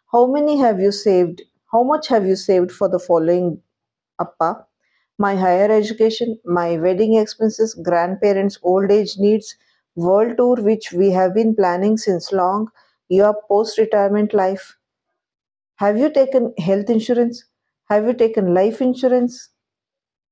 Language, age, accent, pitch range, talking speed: Kannada, 50-69, native, 175-225 Hz, 140 wpm